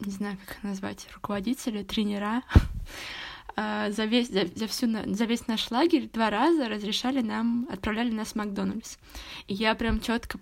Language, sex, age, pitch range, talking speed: Russian, female, 20-39, 205-240 Hz, 155 wpm